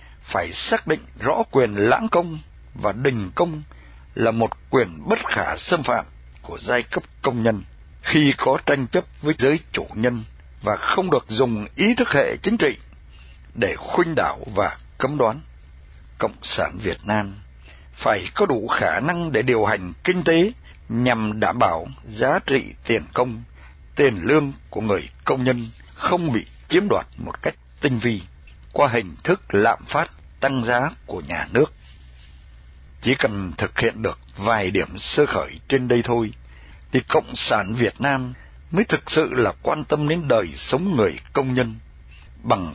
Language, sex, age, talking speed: Vietnamese, male, 60-79, 170 wpm